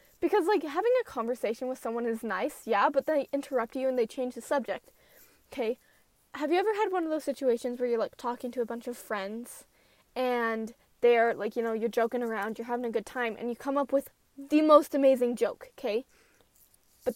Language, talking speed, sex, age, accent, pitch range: English, 215 wpm, female, 10-29, American, 245-345 Hz